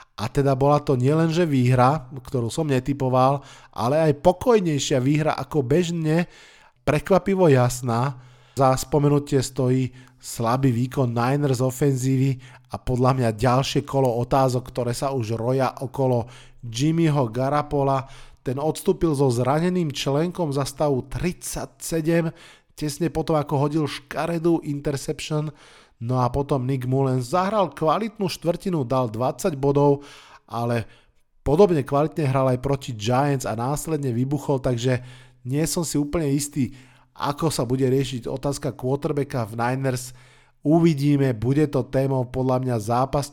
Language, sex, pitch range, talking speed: Slovak, male, 125-155 Hz, 130 wpm